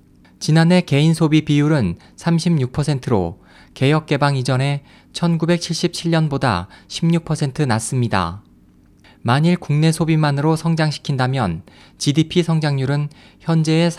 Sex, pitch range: male, 115-160 Hz